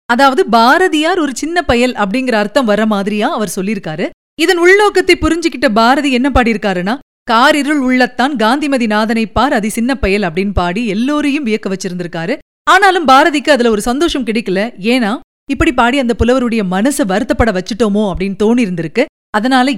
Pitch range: 210-295 Hz